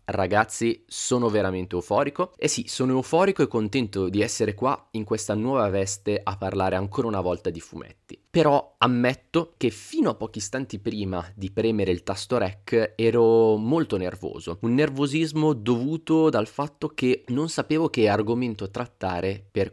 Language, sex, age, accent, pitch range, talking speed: Italian, male, 20-39, native, 100-130 Hz, 160 wpm